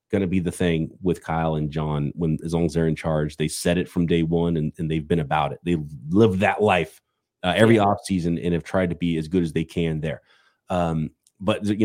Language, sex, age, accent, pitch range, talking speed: English, male, 30-49, American, 80-95 Hz, 250 wpm